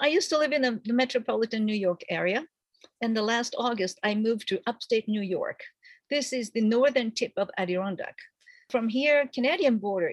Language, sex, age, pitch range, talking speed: English, female, 50-69, 190-265 Hz, 185 wpm